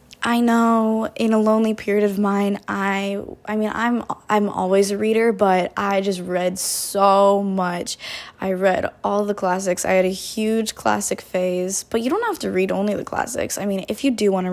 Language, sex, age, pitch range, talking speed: English, female, 10-29, 190-220 Hz, 200 wpm